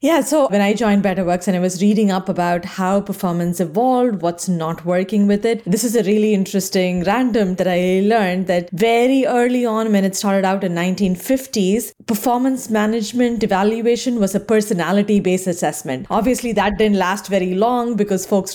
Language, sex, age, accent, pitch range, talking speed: English, female, 20-39, Indian, 185-230 Hz, 175 wpm